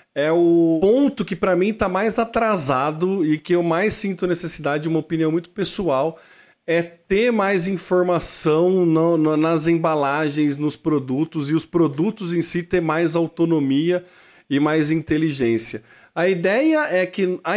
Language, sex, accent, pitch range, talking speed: Portuguese, male, Brazilian, 145-180 Hz, 150 wpm